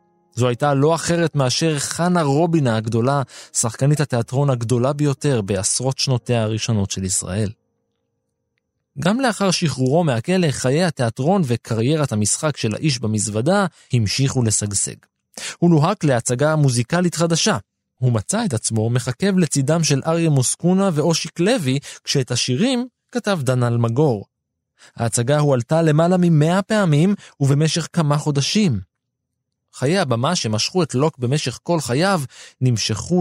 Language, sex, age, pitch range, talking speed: Hebrew, male, 20-39, 120-165 Hz, 125 wpm